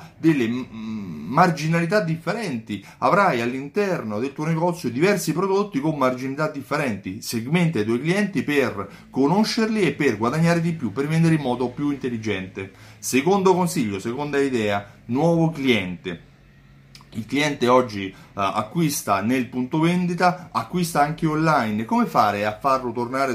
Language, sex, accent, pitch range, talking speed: Italian, male, native, 110-165 Hz, 130 wpm